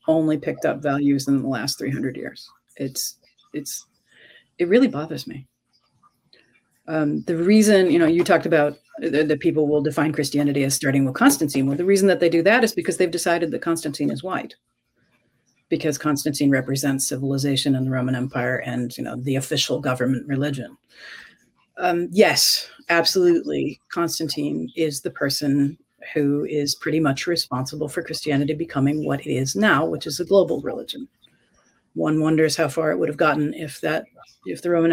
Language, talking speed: English, 170 wpm